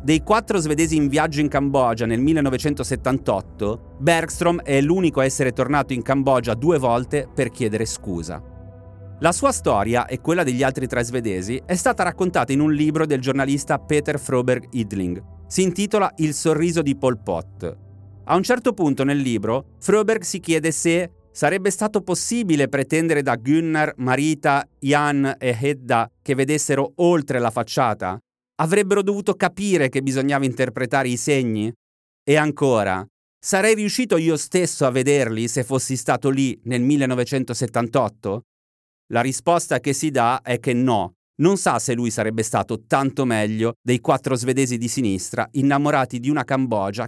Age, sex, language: 30-49, male, Italian